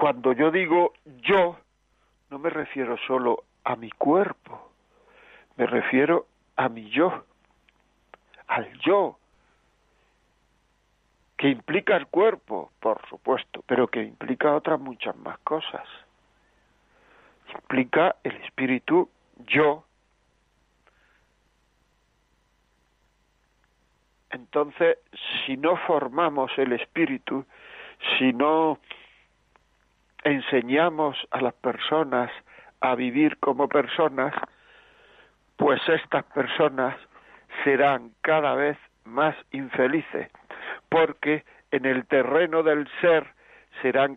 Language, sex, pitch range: Spanish, male, 130-155 Hz